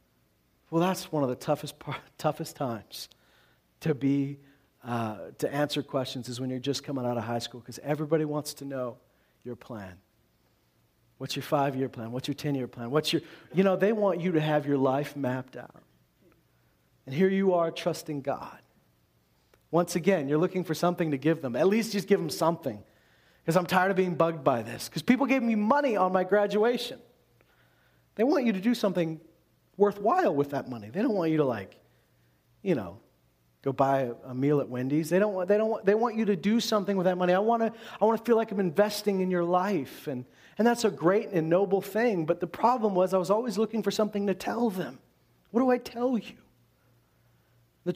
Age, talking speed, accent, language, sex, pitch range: 40-59, 210 wpm, American, English, male, 135-205 Hz